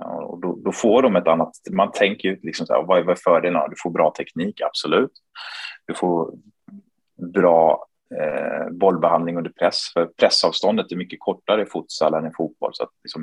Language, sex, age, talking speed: Swedish, male, 30-49, 175 wpm